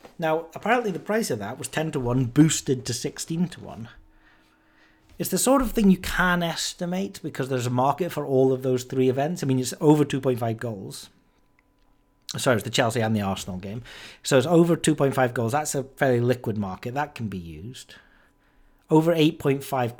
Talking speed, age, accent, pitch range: 190 wpm, 40-59, British, 115-145 Hz